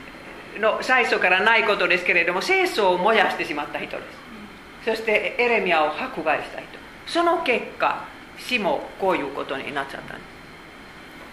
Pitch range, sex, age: 165-245 Hz, female, 50-69